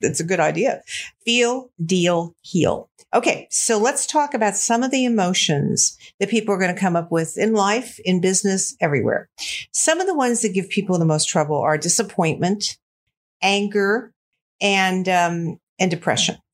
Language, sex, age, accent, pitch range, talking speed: English, female, 50-69, American, 170-230 Hz, 165 wpm